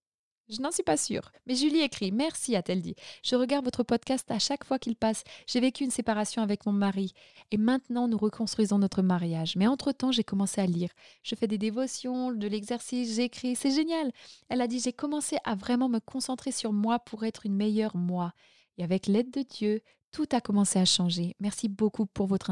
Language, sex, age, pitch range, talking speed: French, female, 20-39, 200-250 Hz, 220 wpm